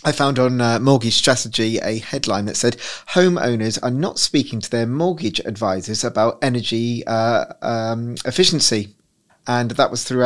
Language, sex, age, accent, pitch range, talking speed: English, male, 30-49, British, 110-130 Hz, 160 wpm